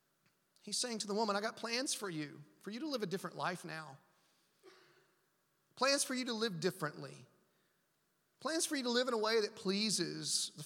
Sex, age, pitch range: male, 30-49, 165-235 Hz